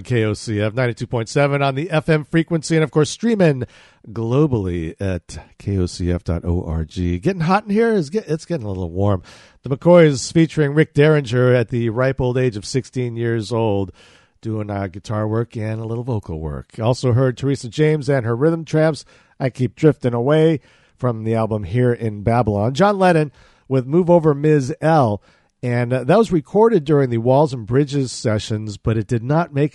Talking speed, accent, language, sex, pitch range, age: 175 wpm, American, English, male, 110-150 Hz, 50-69